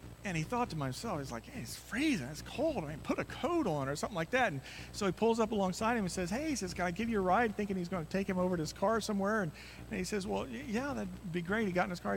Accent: American